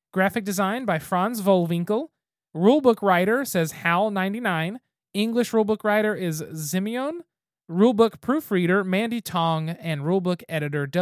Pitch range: 170-225 Hz